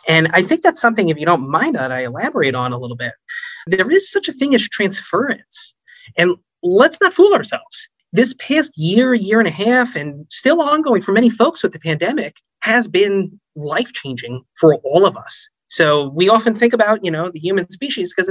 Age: 30-49